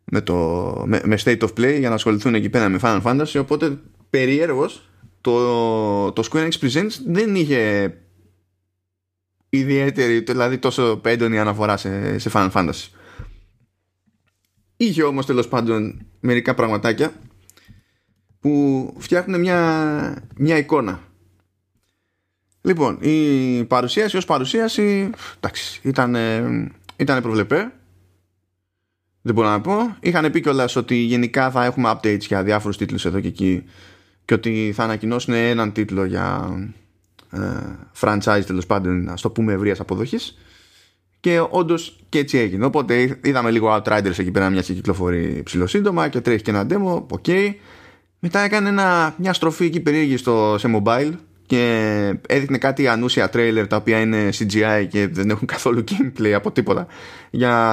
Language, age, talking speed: Greek, 20-39, 135 wpm